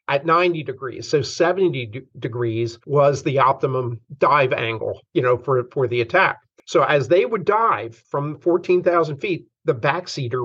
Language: English